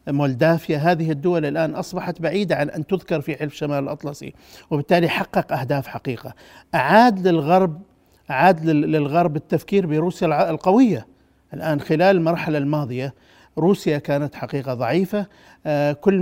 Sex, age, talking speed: male, 50-69, 120 wpm